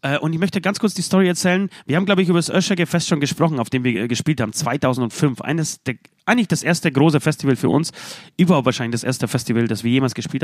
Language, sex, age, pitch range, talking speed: German, male, 30-49, 130-165 Hz, 230 wpm